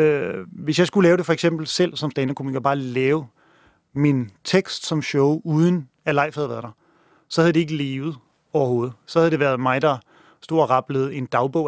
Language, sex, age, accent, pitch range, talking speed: Danish, male, 30-49, native, 135-165 Hz, 200 wpm